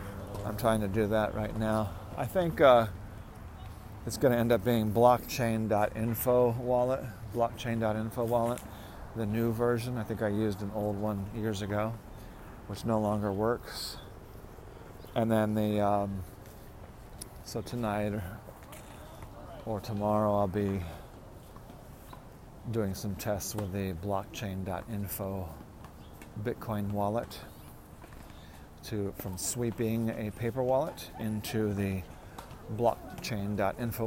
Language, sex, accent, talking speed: English, male, American, 110 wpm